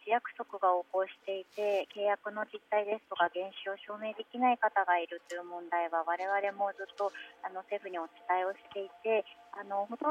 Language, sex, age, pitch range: Japanese, male, 40-59, 175-245 Hz